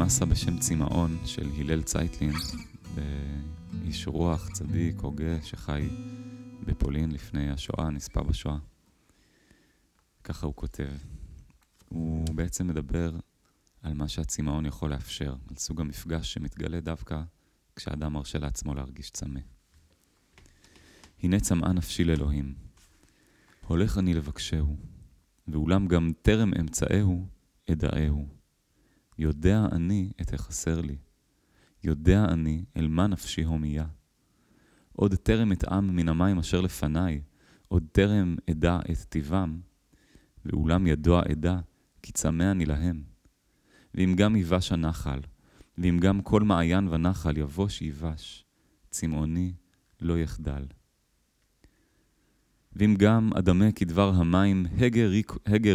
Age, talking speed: 30-49, 105 wpm